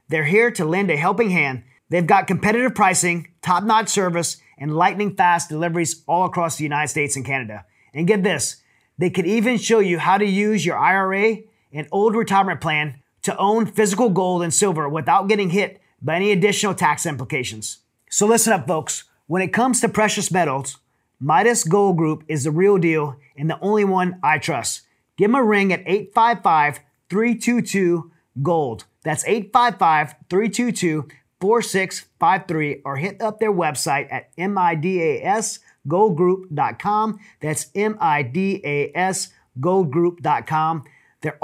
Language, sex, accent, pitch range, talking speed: English, male, American, 155-205 Hz, 140 wpm